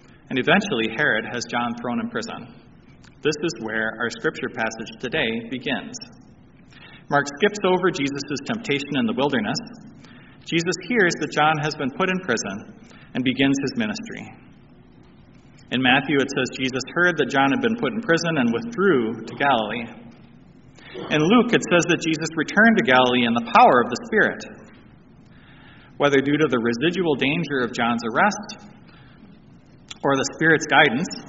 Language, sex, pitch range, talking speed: English, male, 135-205 Hz, 155 wpm